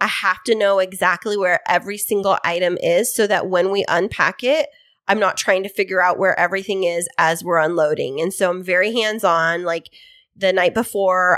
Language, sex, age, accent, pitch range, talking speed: English, female, 20-39, American, 175-205 Hz, 195 wpm